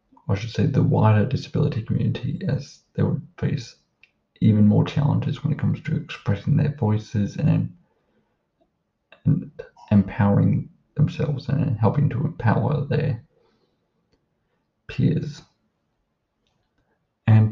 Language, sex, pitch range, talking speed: English, male, 115-150 Hz, 110 wpm